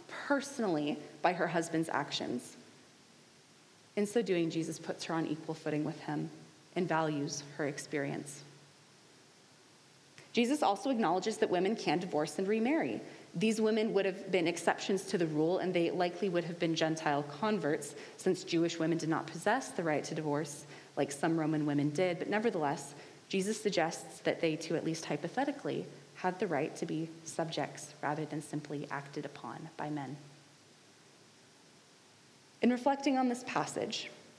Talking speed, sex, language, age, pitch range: 155 wpm, female, English, 20-39, 150-190 Hz